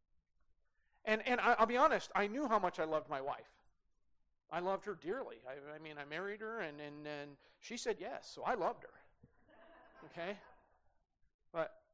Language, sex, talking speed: English, male, 180 wpm